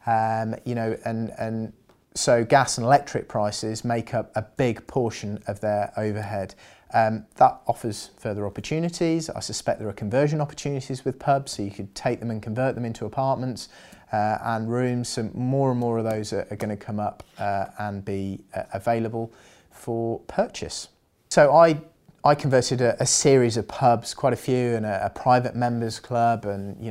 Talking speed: 185 wpm